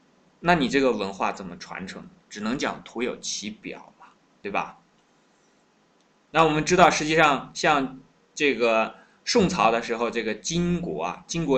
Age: 20-39